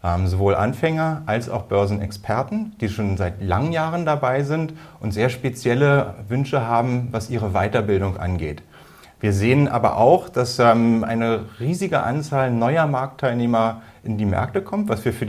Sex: male